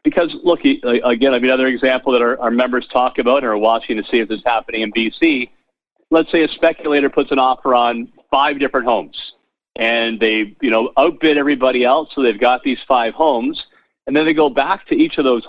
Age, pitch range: 50-69, 120-150 Hz